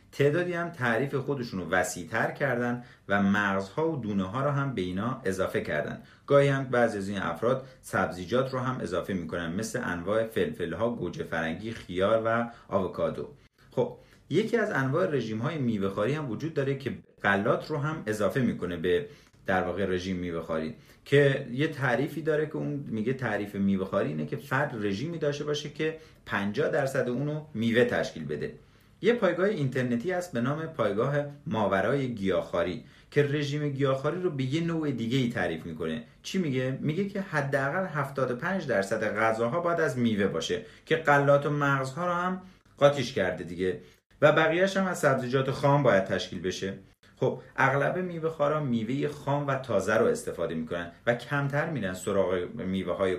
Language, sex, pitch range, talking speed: Persian, male, 100-145 Hz, 165 wpm